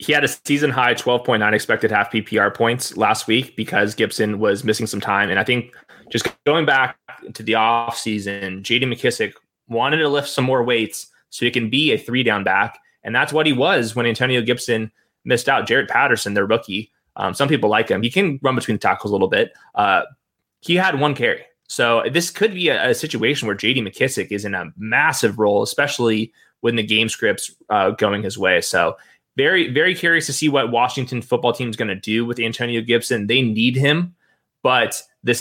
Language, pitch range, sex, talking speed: English, 110-145 Hz, male, 210 wpm